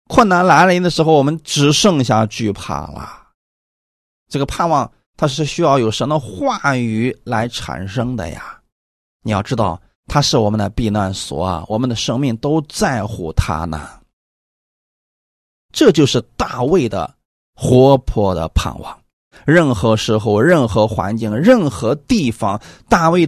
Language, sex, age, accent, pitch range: Chinese, male, 30-49, native, 100-140 Hz